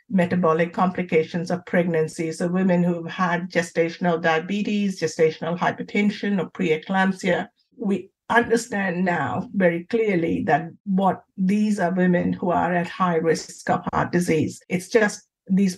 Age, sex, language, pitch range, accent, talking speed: 50-69, female, English, 170-205 Hz, Indian, 135 wpm